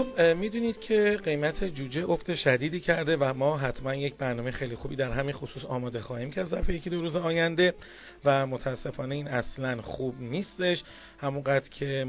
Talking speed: 170 wpm